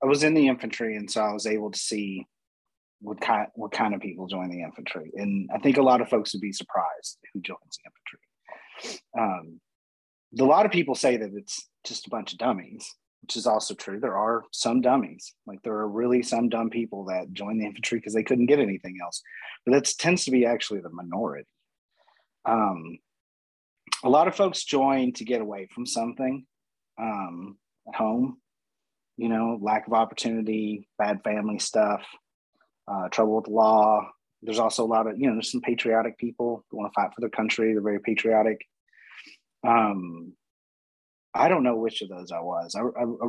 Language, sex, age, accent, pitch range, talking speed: English, male, 30-49, American, 100-125 Hz, 195 wpm